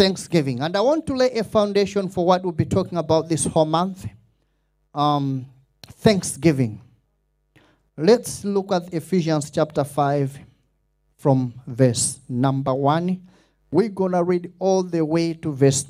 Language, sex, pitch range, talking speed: English, male, 145-175 Hz, 145 wpm